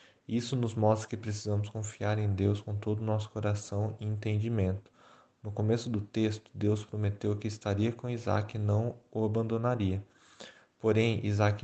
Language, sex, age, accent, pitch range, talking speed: Portuguese, male, 20-39, Brazilian, 105-115 Hz, 160 wpm